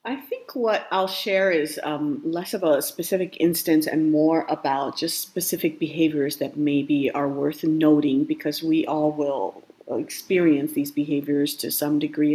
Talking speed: 160 wpm